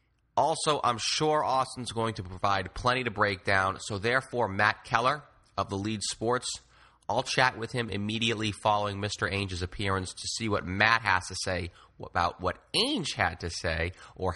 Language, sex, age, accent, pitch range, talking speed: English, male, 30-49, American, 95-115 Hz, 175 wpm